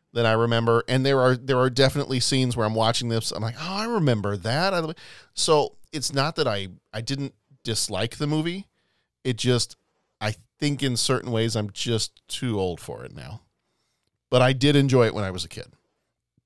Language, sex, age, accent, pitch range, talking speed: English, male, 40-59, American, 100-135 Hz, 195 wpm